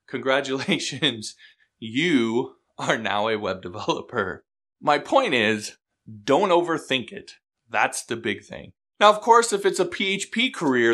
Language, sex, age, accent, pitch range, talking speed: English, male, 20-39, American, 105-175 Hz, 135 wpm